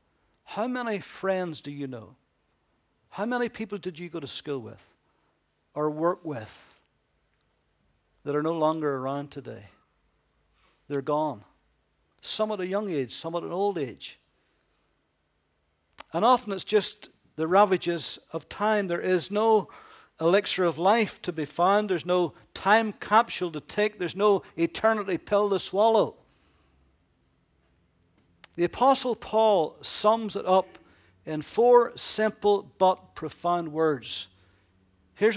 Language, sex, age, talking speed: English, male, 50-69, 130 wpm